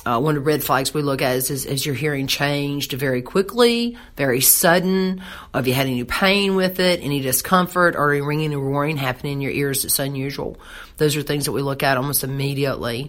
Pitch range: 140-160 Hz